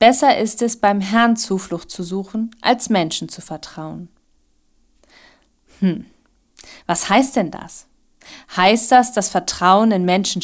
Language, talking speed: German, 130 wpm